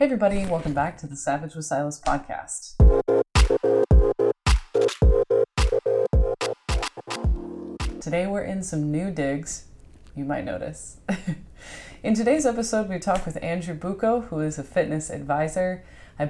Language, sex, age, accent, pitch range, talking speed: English, female, 20-39, American, 145-185 Hz, 120 wpm